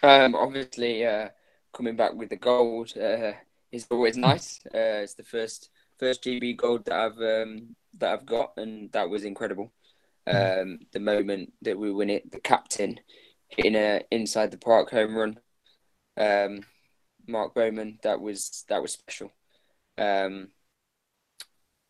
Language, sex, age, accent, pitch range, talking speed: English, male, 20-39, British, 100-115 Hz, 155 wpm